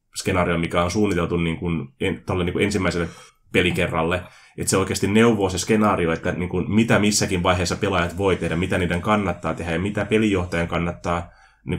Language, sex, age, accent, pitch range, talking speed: Finnish, male, 20-39, native, 85-100 Hz, 185 wpm